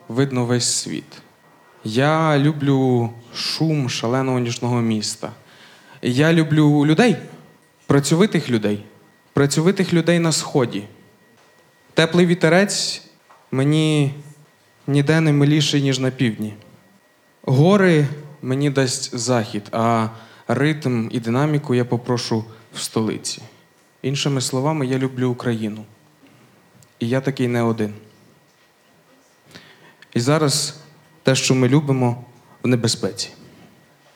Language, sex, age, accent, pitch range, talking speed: Ukrainian, male, 20-39, native, 115-150 Hz, 100 wpm